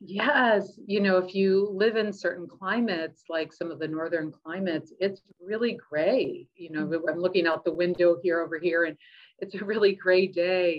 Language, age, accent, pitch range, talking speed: English, 40-59, American, 155-185 Hz, 190 wpm